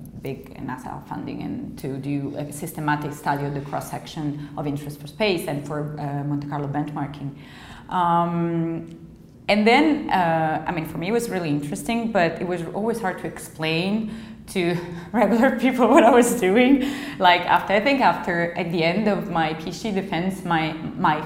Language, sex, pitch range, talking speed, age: English, female, 150-205 Hz, 175 wpm, 20-39